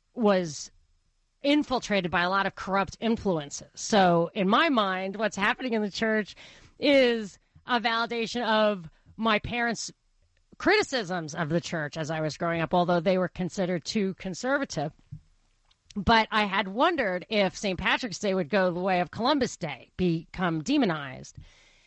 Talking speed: 150 wpm